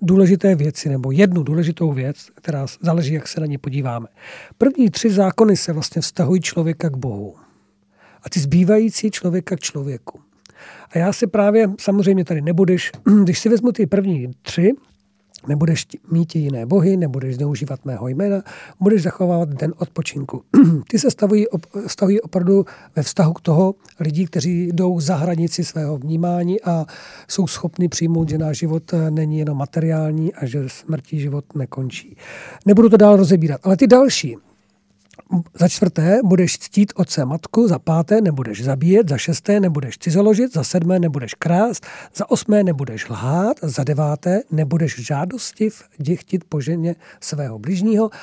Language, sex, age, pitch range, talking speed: Czech, male, 40-59, 155-200 Hz, 155 wpm